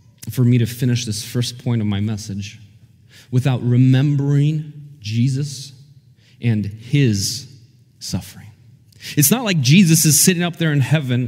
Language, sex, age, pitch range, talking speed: English, male, 30-49, 120-170 Hz, 140 wpm